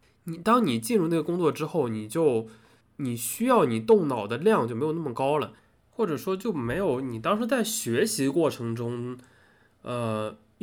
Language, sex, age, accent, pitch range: Chinese, male, 20-39, native, 110-180 Hz